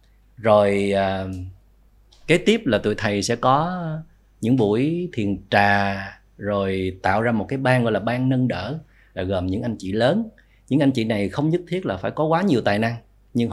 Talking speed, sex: 200 wpm, male